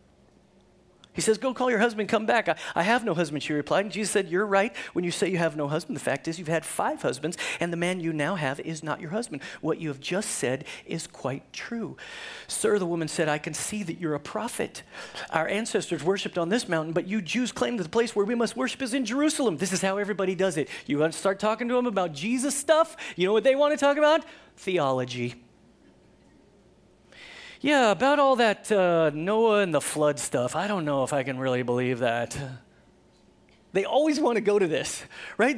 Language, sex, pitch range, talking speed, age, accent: English, male, 165-235 Hz, 230 wpm, 40-59, American